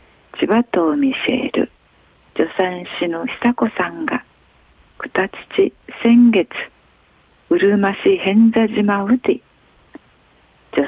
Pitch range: 175-250 Hz